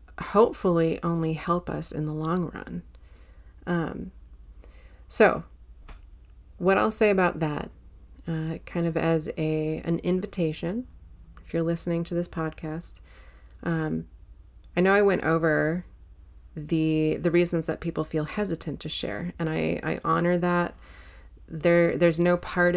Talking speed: 135 wpm